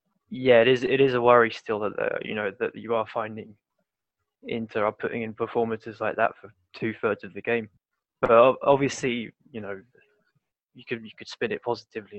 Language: English